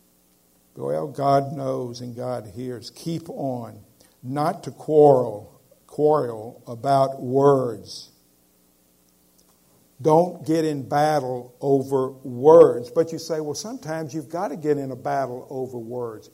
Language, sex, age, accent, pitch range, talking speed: English, male, 50-69, American, 125-160 Hz, 125 wpm